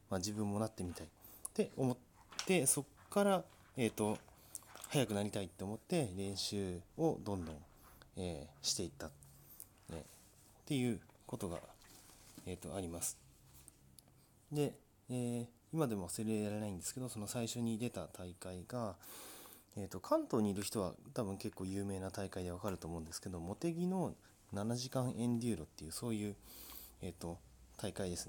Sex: male